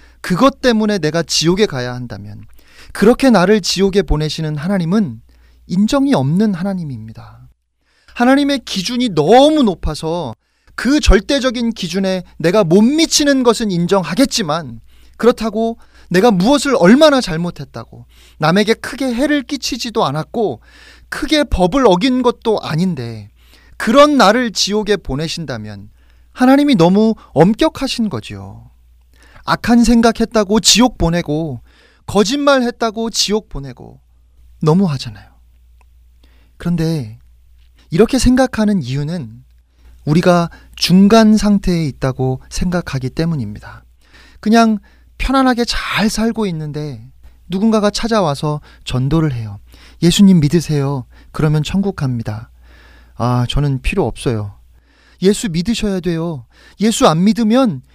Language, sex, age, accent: Korean, male, 30-49, native